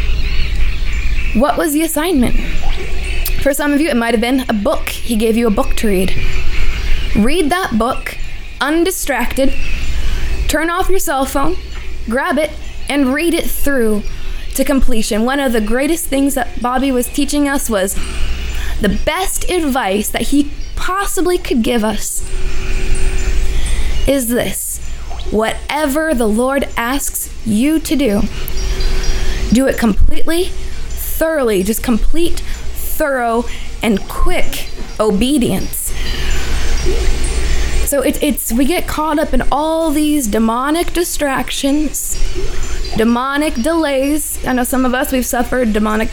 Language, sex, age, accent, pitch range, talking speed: English, female, 20-39, American, 210-295 Hz, 125 wpm